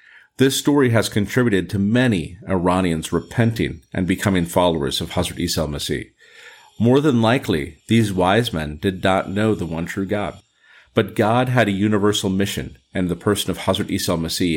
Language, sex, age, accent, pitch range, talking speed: English, male, 40-59, American, 90-115 Hz, 160 wpm